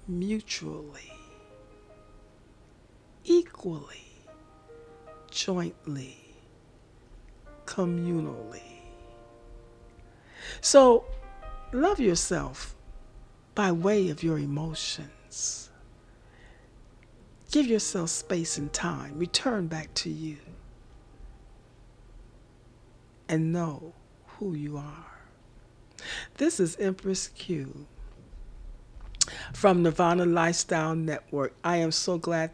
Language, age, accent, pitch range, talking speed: English, 60-79, American, 120-180 Hz, 70 wpm